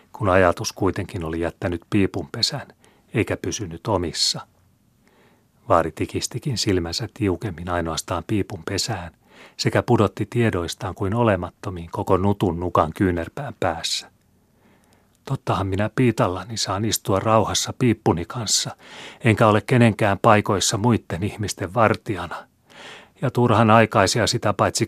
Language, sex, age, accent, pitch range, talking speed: Finnish, male, 40-59, native, 95-115 Hz, 110 wpm